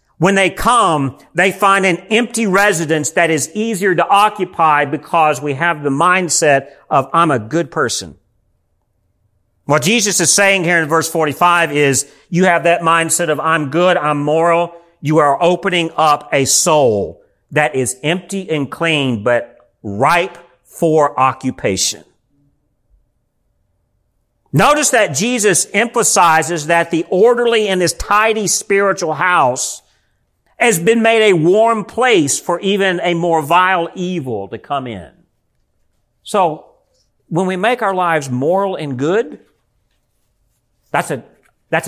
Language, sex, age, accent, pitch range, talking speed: English, male, 50-69, American, 130-180 Hz, 135 wpm